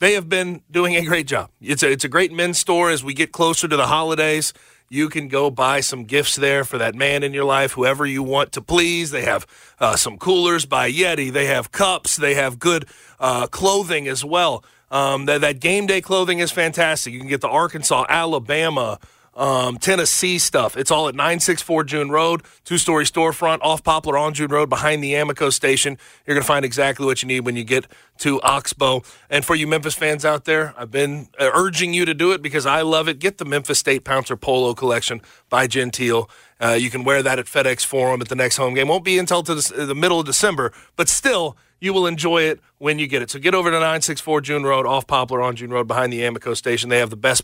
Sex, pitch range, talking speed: male, 130-170 Hz, 230 wpm